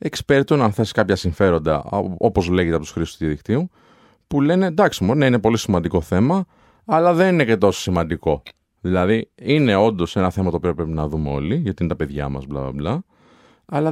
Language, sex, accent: Greek, male, native